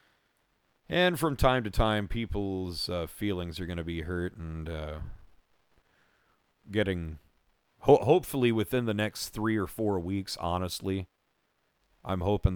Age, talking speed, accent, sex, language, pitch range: 40-59, 135 wpm, American, male, English, 85-125 Hz